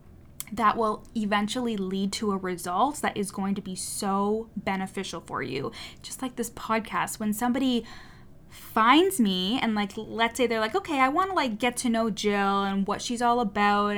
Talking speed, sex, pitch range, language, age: 190 wpm, female, 200-240 Hz, English, 10-29